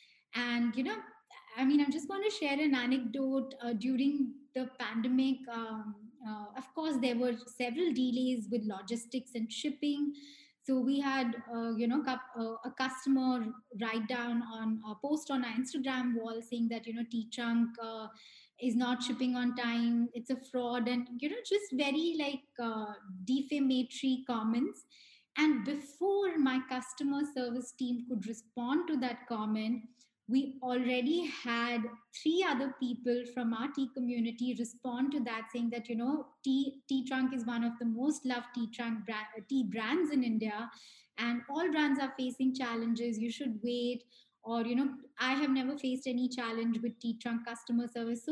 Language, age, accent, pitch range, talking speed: English, 20-39, Indian, 235-280 Hz, 165 wpm